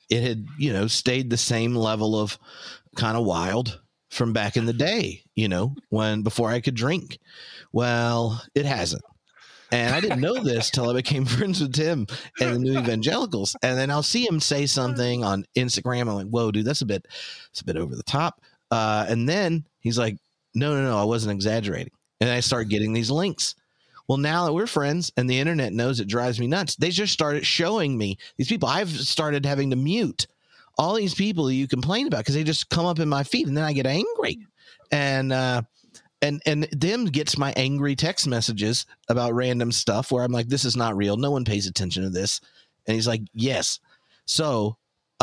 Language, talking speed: English, 210 wpm